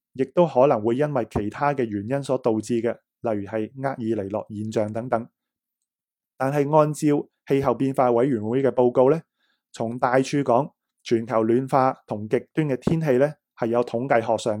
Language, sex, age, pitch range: Chinese, male, 20-39, 115-140 Hz